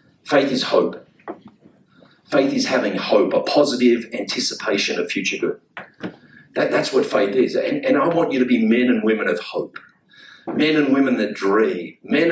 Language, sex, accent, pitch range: English, male, Australian, 110-130 Hz